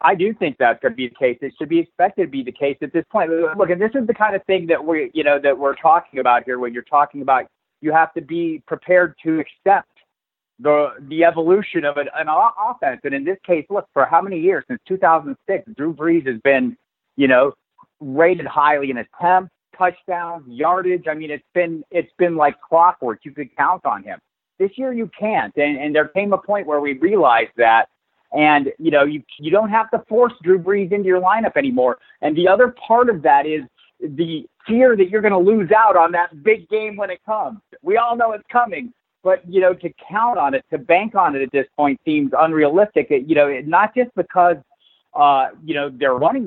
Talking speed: 220 wpm